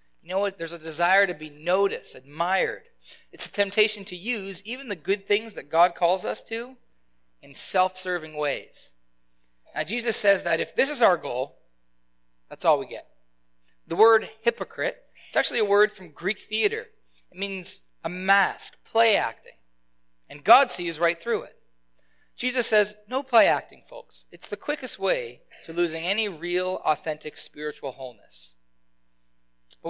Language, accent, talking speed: English, American, 160 wpm